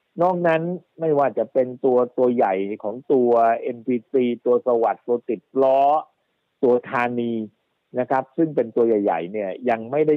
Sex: male